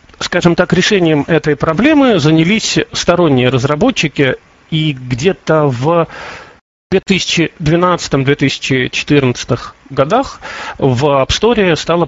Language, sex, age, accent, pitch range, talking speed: Russian, male, 40-59, native, 140-185 Hz, 85 wpm